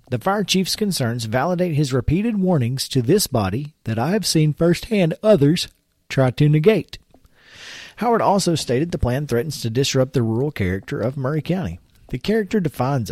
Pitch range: 115-160 Hz